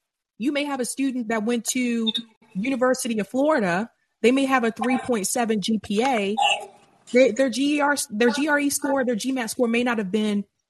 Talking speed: 165 wpm